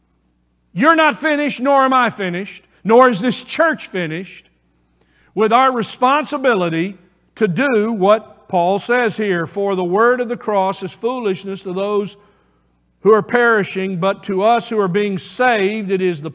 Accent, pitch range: American, 170-220 Hz